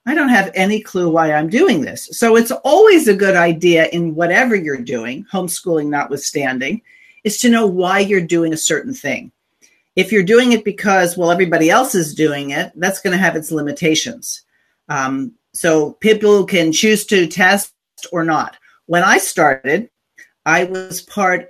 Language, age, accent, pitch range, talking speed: English, 50-69, American, 160-205 Hz, 175 wpm